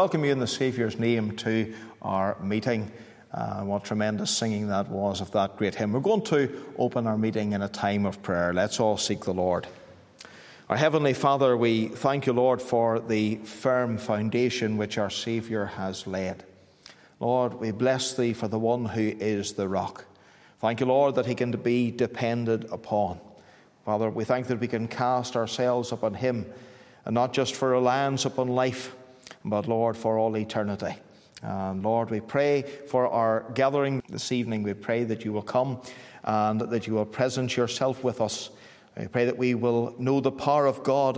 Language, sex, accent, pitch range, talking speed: English, male, Irish, 110-130 Hz, 185 wpm